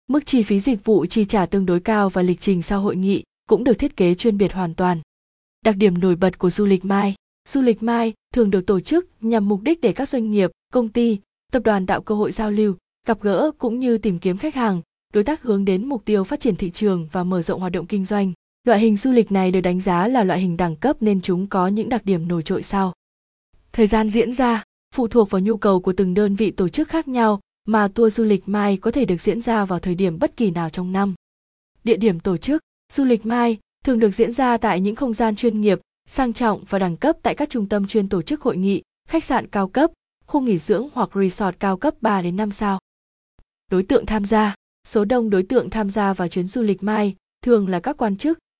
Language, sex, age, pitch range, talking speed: Vietnamese, female, 20-39, 185-230 Hz, 250 wpm